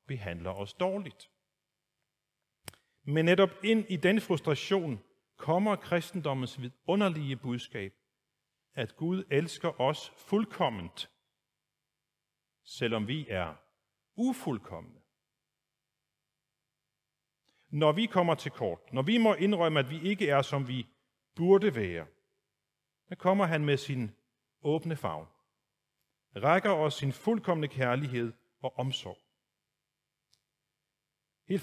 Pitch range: 125-175 Hz